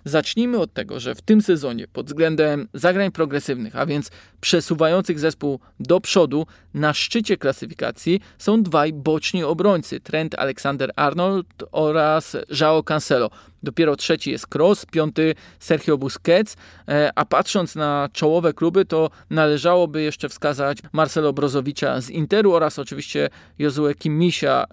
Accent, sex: native, male